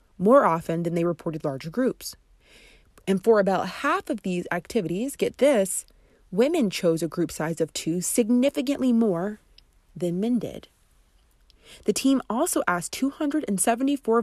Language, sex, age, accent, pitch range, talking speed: English, female, 30-49, American, 170-230 Hz, 140 wpm